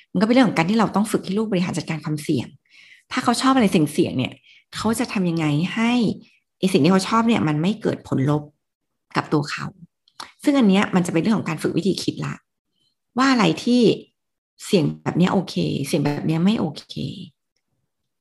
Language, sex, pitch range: Thai, female, 160-210 Hz